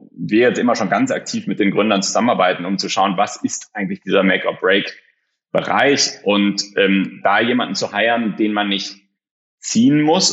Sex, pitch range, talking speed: male, 95-110 Hz, 170 wpm